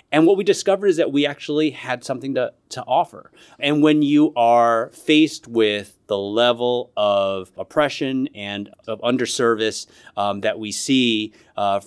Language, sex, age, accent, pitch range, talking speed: English, male, 30-49, American, 110-135 Hz, 155 wpm